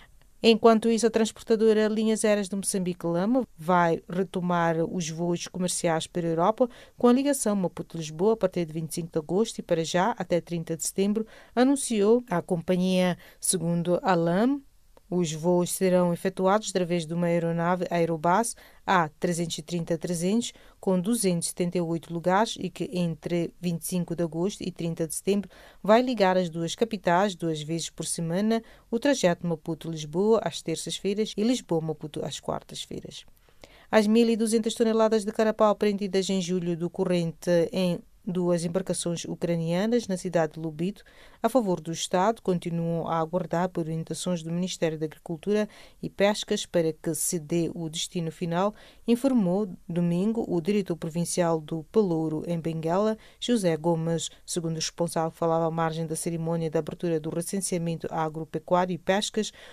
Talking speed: 145 wpm